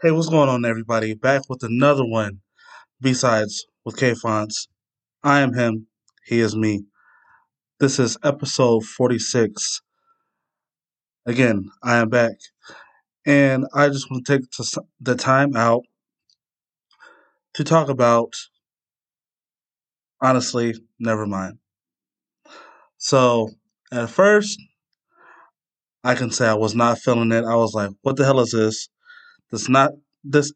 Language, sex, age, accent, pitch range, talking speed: English, male, 20-39, American, 115-140 Hz, 120 wpm